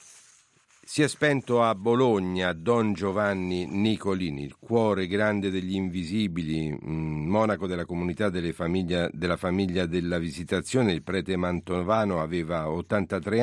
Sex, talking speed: male, 120 wpm